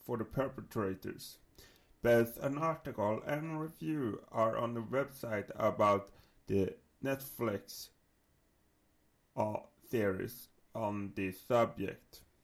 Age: 30-49